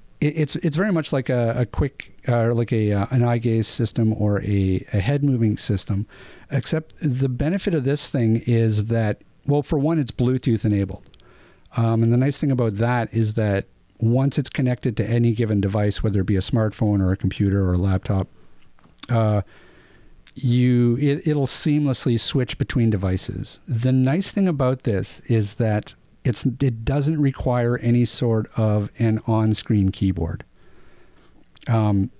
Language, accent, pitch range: English, American, 105-135 Hz